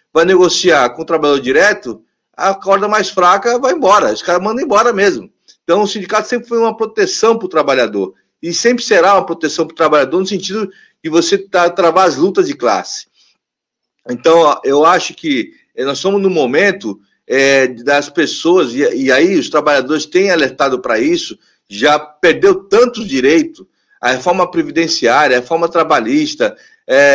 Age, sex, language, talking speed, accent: 40-59, male, Portuguese, 170 wpm, Brazilian